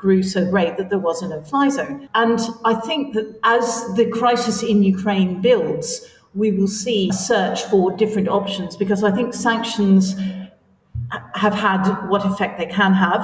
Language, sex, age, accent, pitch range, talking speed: English, female, 50-69, British, 185-215 Hz, 170 wpm